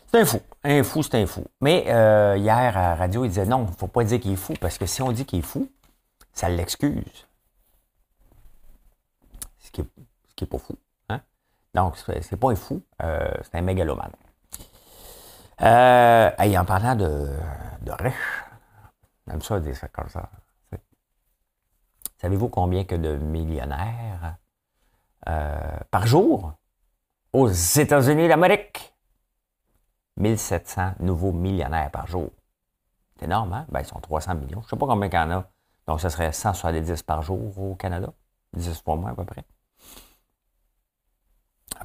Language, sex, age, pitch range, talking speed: French, male, 50-69, 85-110 Hz, 160 wpm